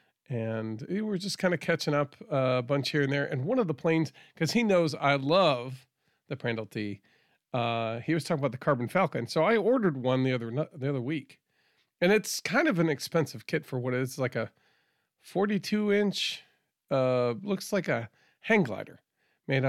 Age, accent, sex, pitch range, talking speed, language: 40-59, American, male, 120-150 Hz, 200 wpm, English